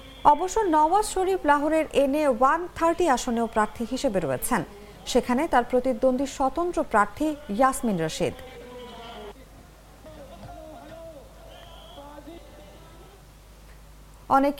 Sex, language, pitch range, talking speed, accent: female, English, 240-320 Hz, 65 wpm, Indian